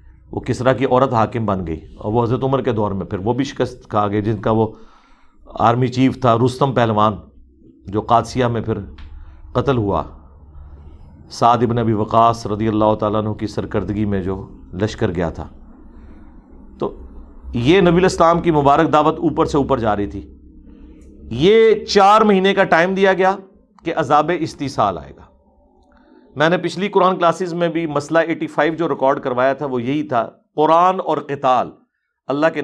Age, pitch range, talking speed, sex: 50-69, 110-170 Hz, 175 wpm, male